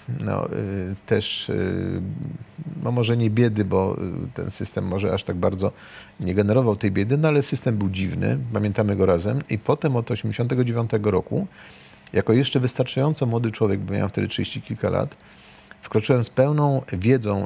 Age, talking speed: 40-59, 165 wpm